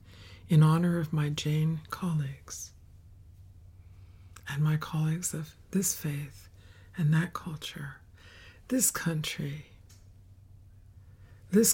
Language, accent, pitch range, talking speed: English, American, 95-155 Hz, 90 wpm